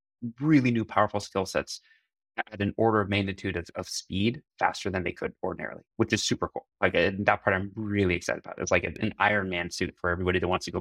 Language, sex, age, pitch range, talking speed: English, male, 20-39, 90-110 Hz, 230 wpm